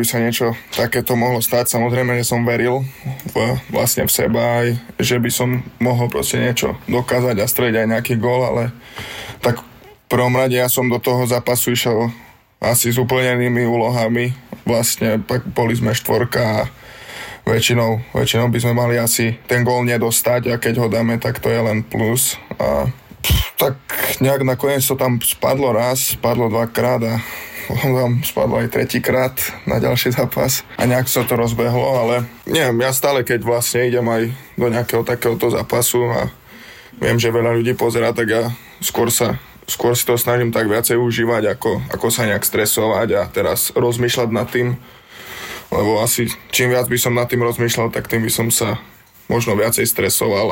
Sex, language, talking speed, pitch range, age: male, Slovak, 170 wpm, 115-125 Hz, 20-39